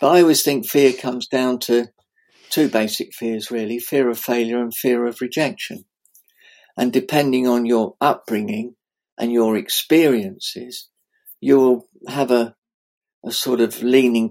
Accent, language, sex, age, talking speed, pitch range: British, English, male, 50-69, 145 wpm, 120-145 Hz